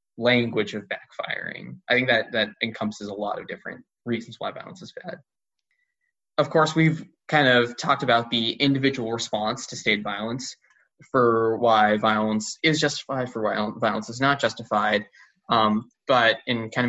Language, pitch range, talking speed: English, 110-130 Hz, 160 wpm